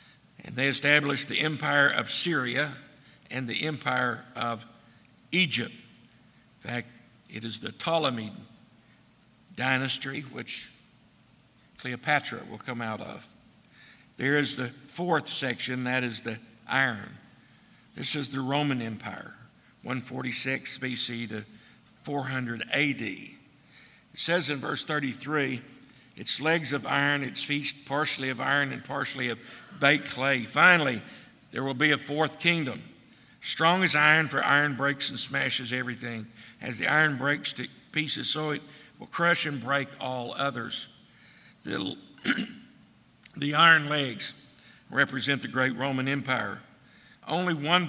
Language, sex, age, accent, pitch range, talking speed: English, male, 60-79, American, 125-150 Hz, 130 wpm